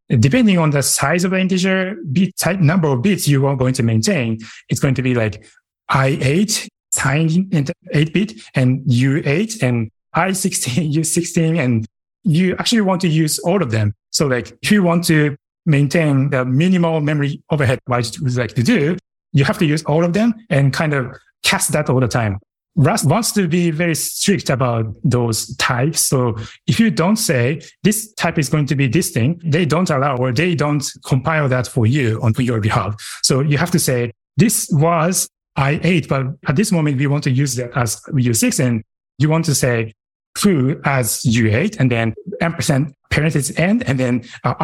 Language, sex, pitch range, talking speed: English, male, 130-170 Hz, 190 wpm